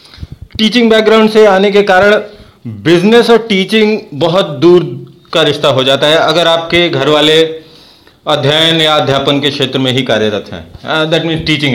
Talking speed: 155 wpm